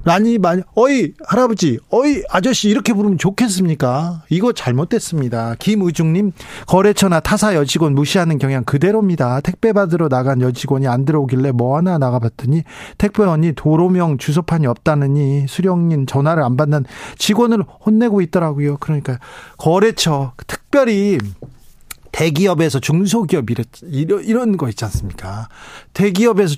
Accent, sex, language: native, male, Korean